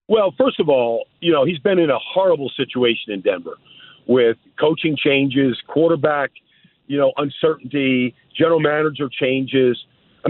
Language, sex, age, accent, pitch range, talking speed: English, male, 50-69, American, 140-180 Hz, 145 wpm